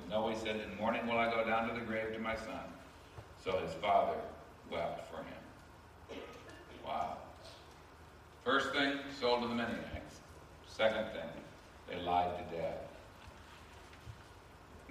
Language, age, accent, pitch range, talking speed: English, 60-79, American, 90-115 Hz, 135 wpm